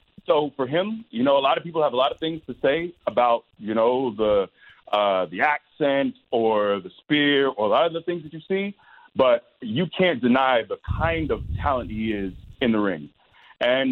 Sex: male